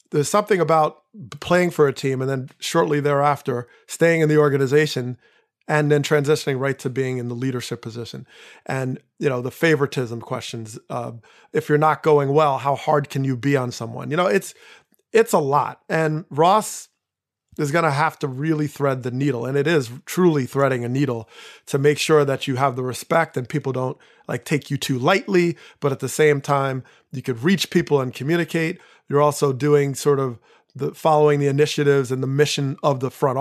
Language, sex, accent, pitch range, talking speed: English, male, American, 135-155 Hz, 200 wpm